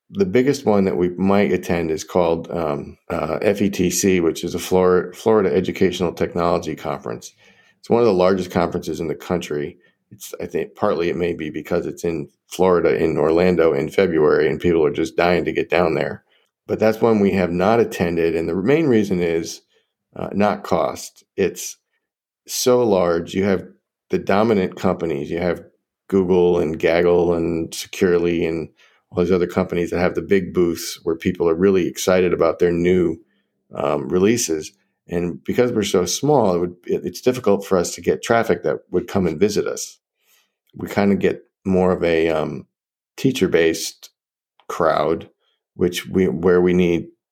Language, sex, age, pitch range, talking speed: English, male, 40-59, 85-100 Hz, 175 wpm